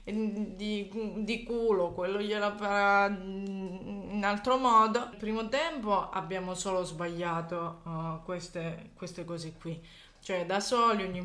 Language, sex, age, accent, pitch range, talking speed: Italian, female, 20-39, native, 175-205 Hz, 130 wpm